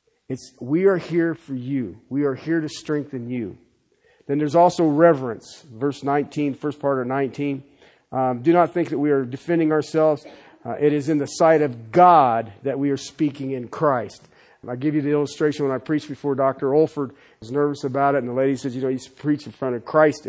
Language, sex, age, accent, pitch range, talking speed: English, male, 50-69, American, 135-195 Hz, 220 wpm